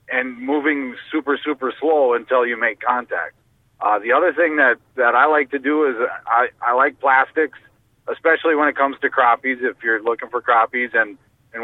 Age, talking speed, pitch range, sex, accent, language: 40-59, 190 wpm, 120-150 Hz, male, American, English